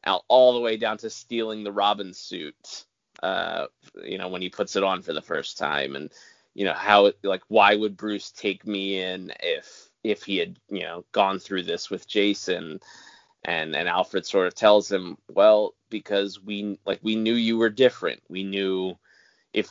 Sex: male